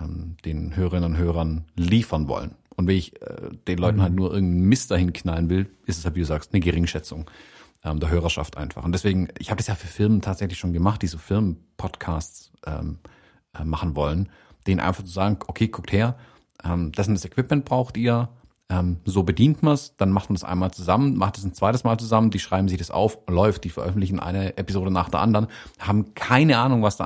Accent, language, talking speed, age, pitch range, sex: German, German, 215 wpm, 40-59, 85-105 Hz, male